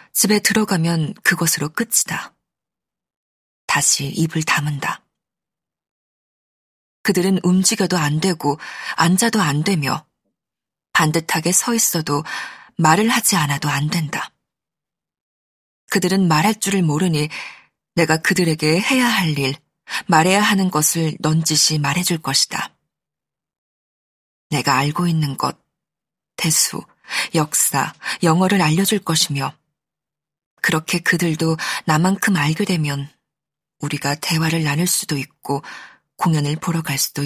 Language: Korean